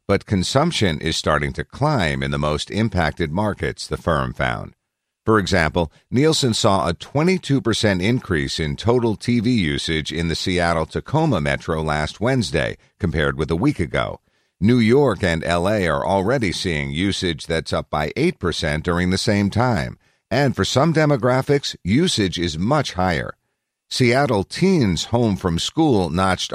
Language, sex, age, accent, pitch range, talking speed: English, male, 50-69, American, 80-110 Hz, 150 wpm